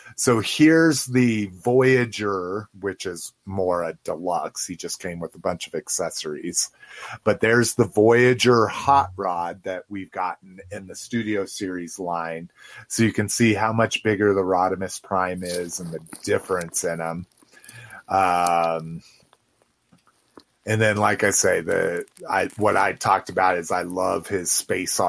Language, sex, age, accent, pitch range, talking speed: English, male, 30-49, American, 95-115 Hz, 155 wpm